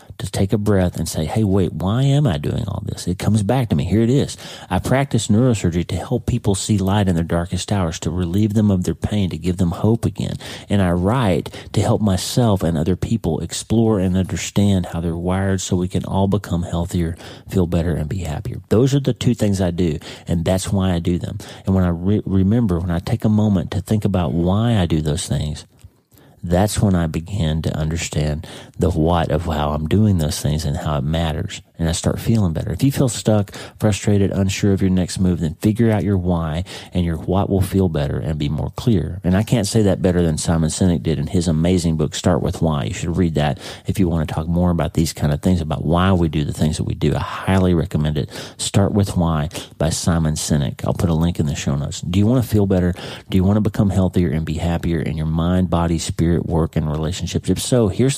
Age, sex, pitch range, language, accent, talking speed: 40-59, male, 85-105 Hz, English, American, 240 wpm